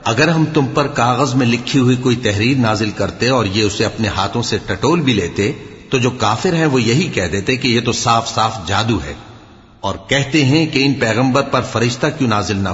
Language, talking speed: English, 220 wpm